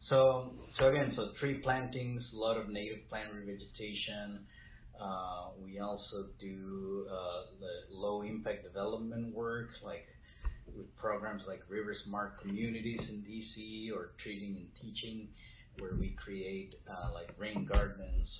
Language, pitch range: English, 100-110 Hz